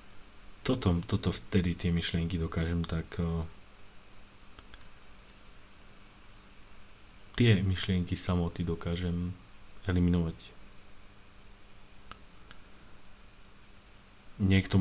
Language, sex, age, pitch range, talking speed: Slovak, male, 30-49, 85-100 Hz, 55 wpm